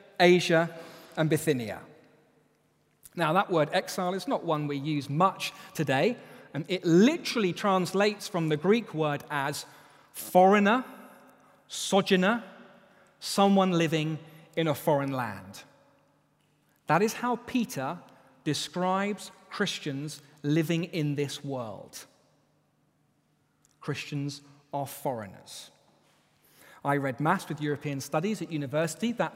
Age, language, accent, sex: 30-49, English, British, male